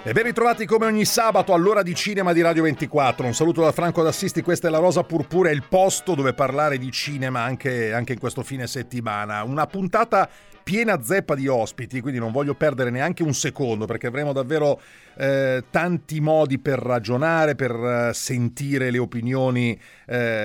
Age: 40-59